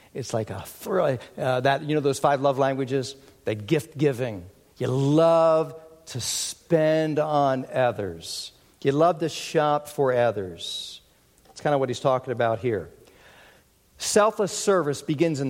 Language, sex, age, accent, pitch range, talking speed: English, male, 50-69, American, 130-195 Hz, 145 wpm